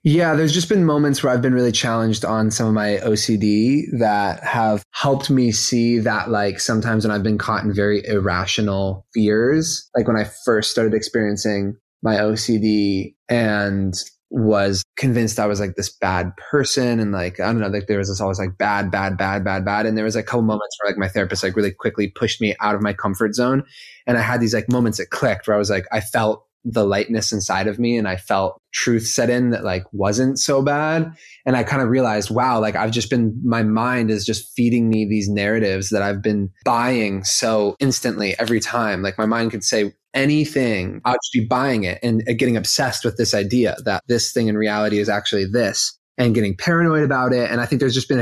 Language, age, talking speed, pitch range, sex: English, 20-39, 220 wpm, 100-120 Hz, male